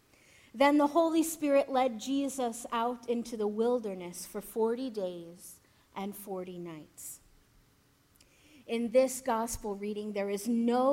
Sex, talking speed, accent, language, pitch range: female, 125 wpm, American, English, 205-255 Hz